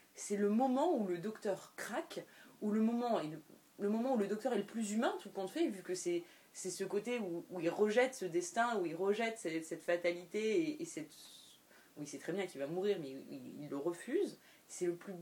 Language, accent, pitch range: French, French, 175-240 Hz